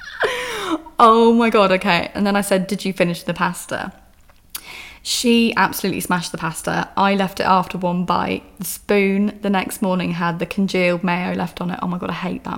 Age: 20-39